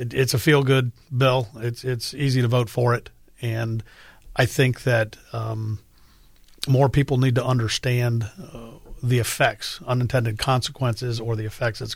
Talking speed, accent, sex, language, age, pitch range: 150 wpm, American, male, English, 50-69, 115-140 Hz